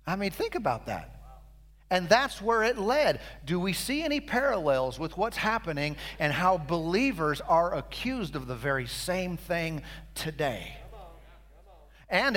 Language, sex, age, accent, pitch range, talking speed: English, male, 40-59, American, 145-185 Hz, 145 wpm